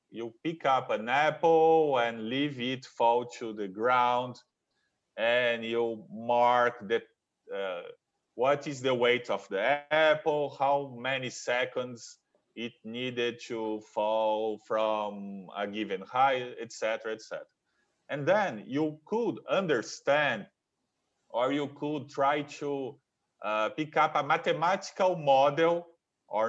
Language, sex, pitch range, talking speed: English, male, 115-160 Hz, 125 wpm